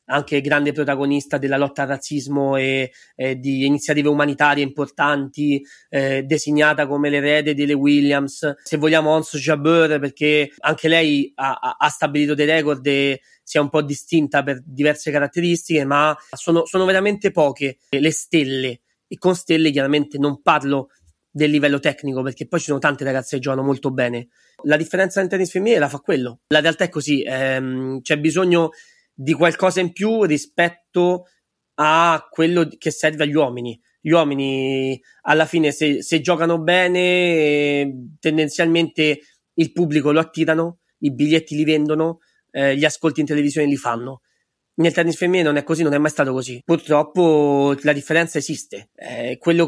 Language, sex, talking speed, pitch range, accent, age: Italian, male, 160 wpm, 140-160 Hz, native, 20-39